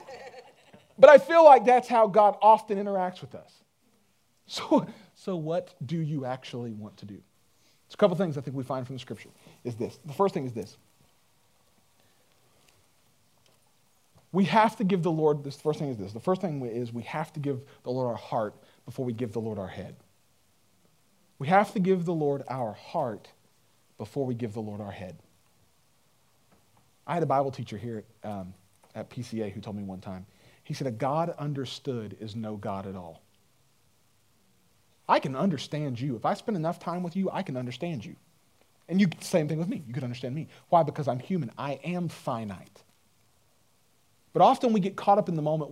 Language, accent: English, American